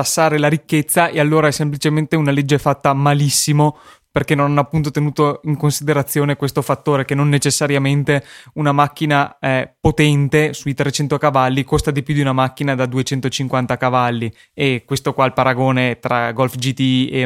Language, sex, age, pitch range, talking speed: Italian, male, 20-39, 135-155 Hz, 165 wpm